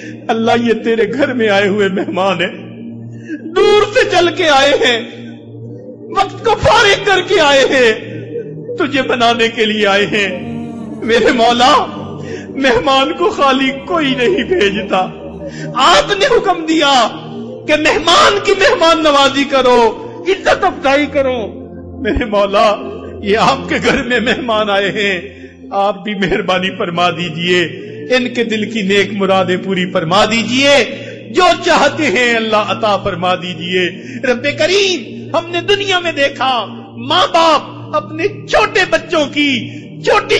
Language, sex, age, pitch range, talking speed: Urdu, male, 50-69, 210-310 Hz, 140 wpm